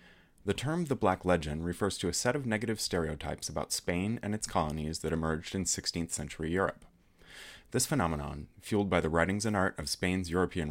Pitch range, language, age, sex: 80-105 Hz, English, 30-49, male